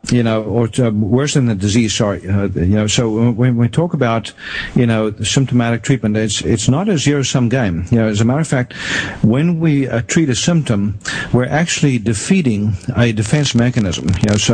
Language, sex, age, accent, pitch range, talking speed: English, male, 50-69, American, 110-125 Hz, 200 wpm